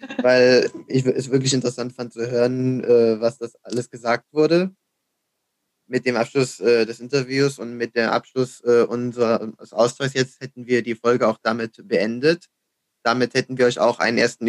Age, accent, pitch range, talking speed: 20-39, German, 115-135 Hz, 175 wpm